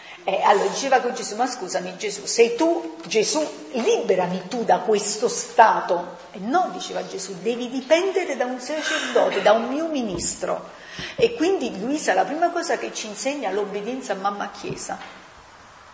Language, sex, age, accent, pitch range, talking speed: Italian, female, 50-69, native, 200-295 Hz, 155 wpm